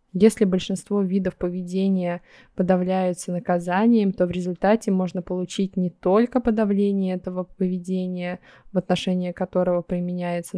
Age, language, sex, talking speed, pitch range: 20-39, Russian, female, 115 wpm, 180-205 Hz